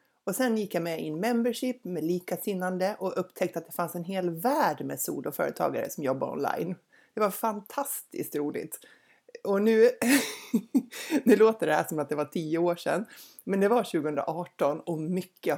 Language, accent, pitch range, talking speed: Swedish, native, 165-230 Hz, 175 wpm